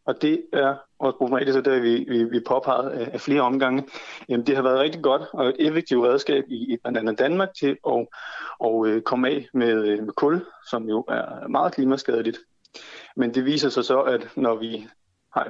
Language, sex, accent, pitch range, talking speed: Danish, male, native, 115-135 Hz, 195 wpm